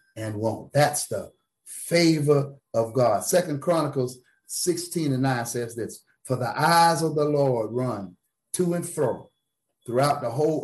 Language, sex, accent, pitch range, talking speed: English, male, American, 120-155 Hz, 150 wpm